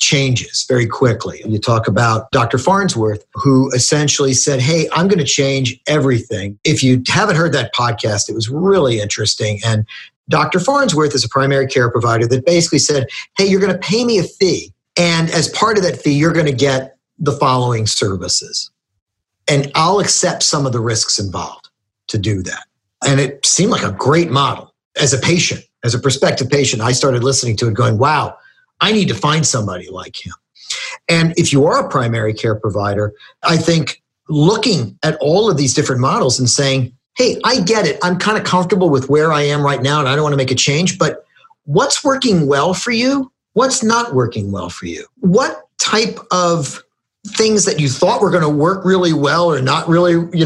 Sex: male